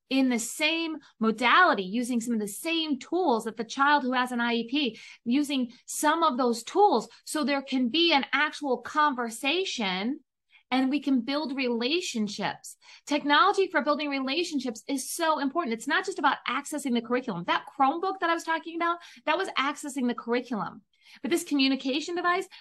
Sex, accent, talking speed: female, American, 170 wpm